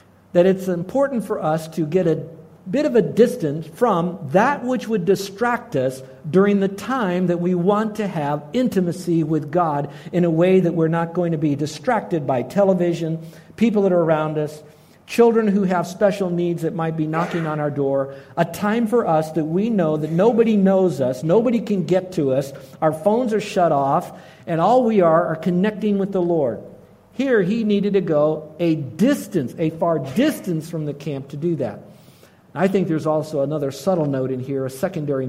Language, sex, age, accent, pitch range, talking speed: English, male, 60-79, American, 135-180 Hz, 195 wpm